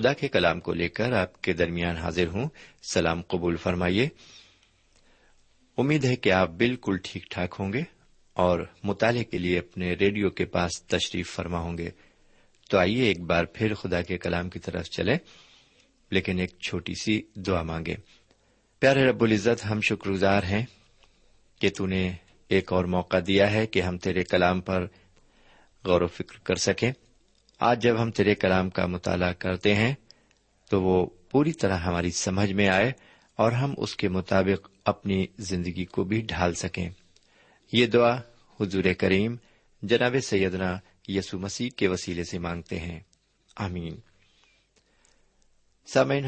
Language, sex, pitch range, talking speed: Urdu, male, 90-110 Hz, 155 wpm